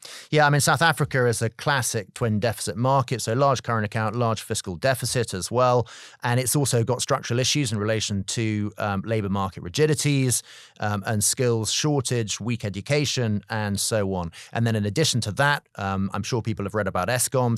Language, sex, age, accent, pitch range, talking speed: English, male, 30-49, British, 105-130 Hz, 190 wpm